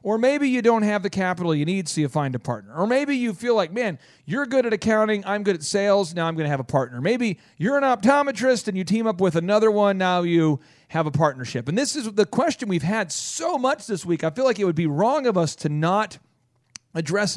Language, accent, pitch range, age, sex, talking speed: English, American, 150-215 Hz, 40-59, male, 255 wpm